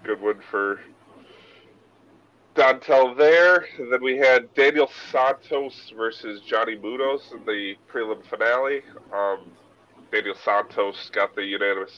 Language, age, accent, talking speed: English, 20-39, American, 120 wpm